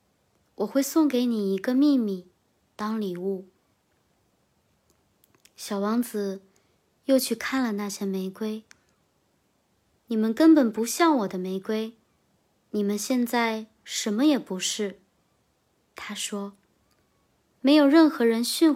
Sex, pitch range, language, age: male, 205-260 Hz, Chinese, 20-39